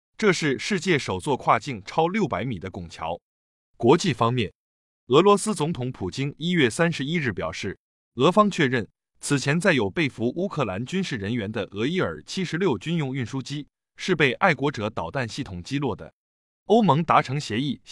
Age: 20-39